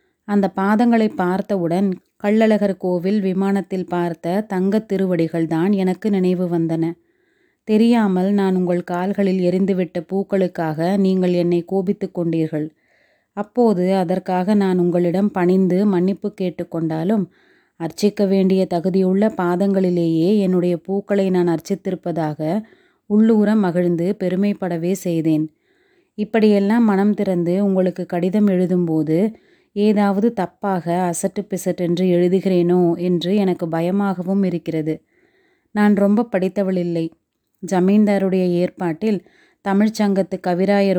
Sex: female